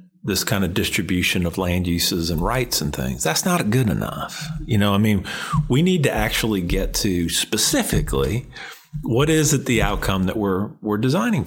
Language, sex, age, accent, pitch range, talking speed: English, male, 40-59, American, 100-135 Hz, 185 wpm